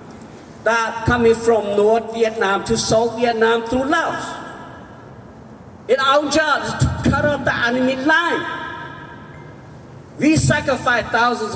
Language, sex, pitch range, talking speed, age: English, male, 240-305 Hz, 120 wpm, 50-69